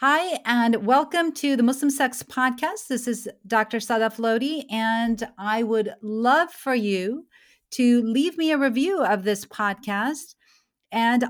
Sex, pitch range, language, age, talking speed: female, 205-270 Hz, English, 40-59, 150 wpm